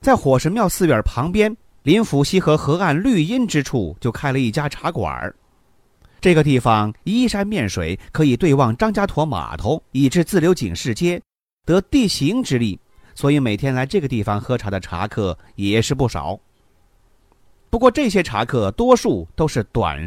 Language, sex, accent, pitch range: Chinese, male, native, 110-180 Hz